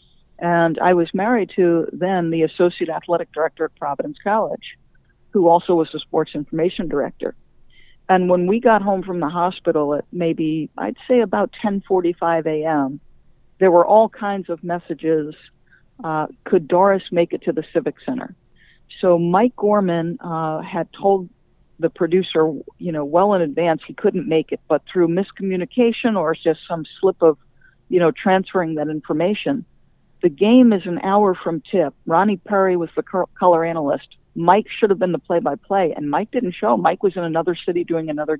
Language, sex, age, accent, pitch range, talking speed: English, female, 50-69, American, 160-195 Hz, 170 wpm